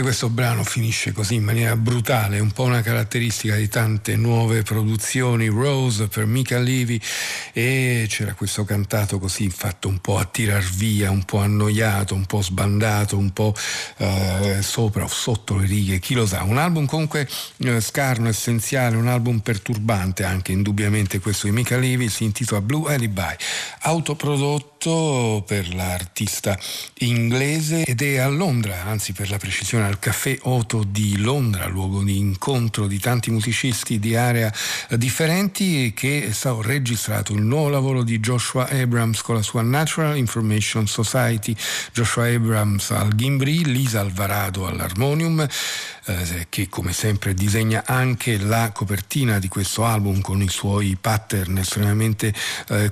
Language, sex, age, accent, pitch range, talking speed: Italian, male, 50-69, native, 100-125 Hz, 150 wpm